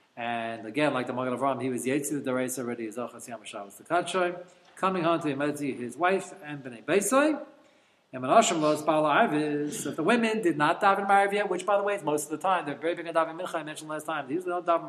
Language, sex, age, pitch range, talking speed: English, male, 40-59, 125-180 Hz, 255 wpm